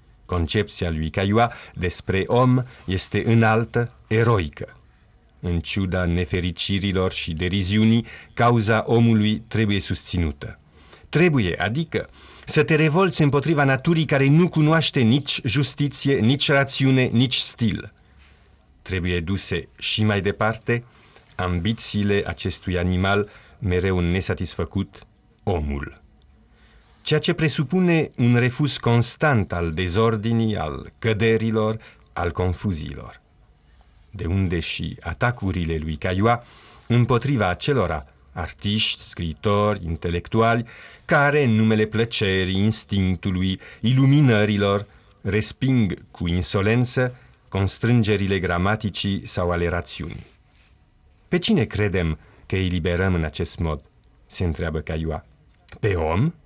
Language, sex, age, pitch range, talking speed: Romanian, male, 50-69, 90-120 Hz, 100 wpm